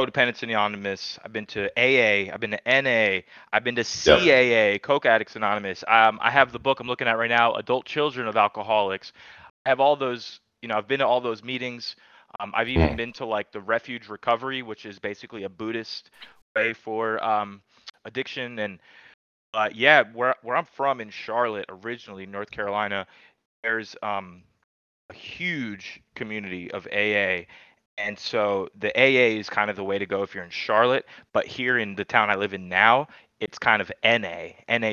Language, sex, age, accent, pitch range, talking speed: English, male, 20-39, American, 100-120 Hz, 185 wpm